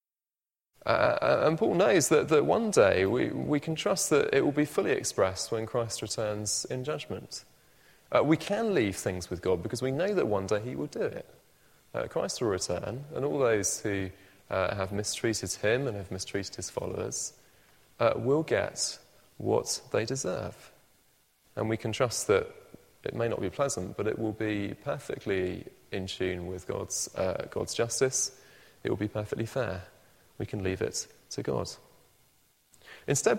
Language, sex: English, male